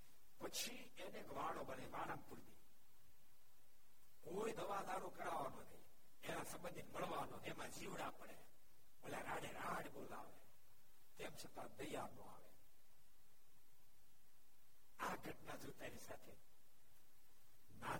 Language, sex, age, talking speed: Gujarati, male, 60-79, 35 wpm